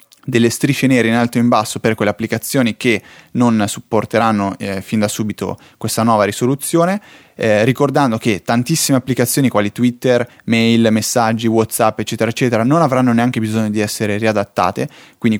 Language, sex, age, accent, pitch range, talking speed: Italian, male, 20-39, native, 110-125 Hz, 160 wpm